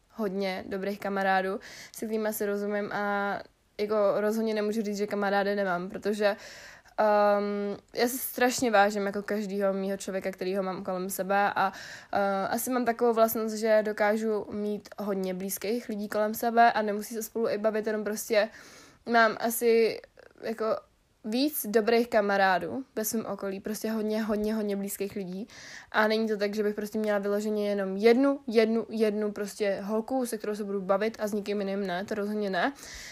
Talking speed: 165 wpm